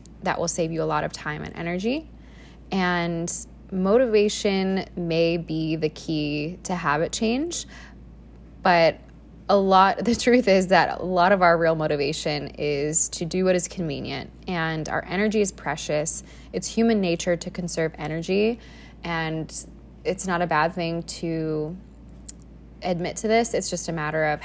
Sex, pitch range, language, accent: female, 160-190 Hz, English, American